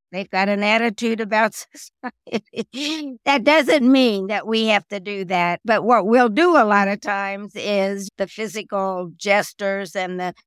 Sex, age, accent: female, 60-79, American